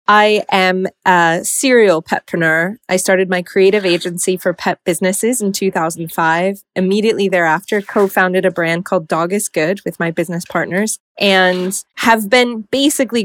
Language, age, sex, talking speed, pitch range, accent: English, 20-39, female, 145 wpm, 175-210 Hz, American